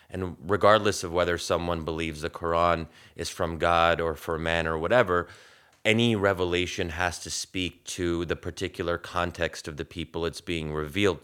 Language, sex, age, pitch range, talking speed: English, male, 30-49, 80-95 Hz, 165 wpm